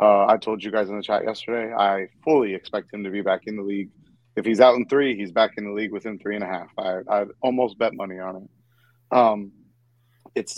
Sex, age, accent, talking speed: male, 30-49, American, 245 wpm